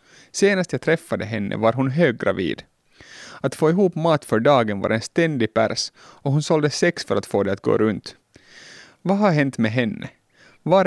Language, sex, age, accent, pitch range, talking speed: Swedish, male, 30-49, Finnish, 115-160 Hz, 190 wpm